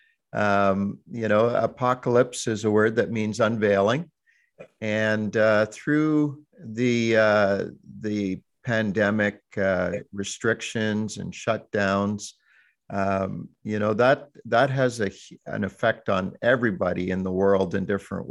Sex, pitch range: male, 100-120 Hz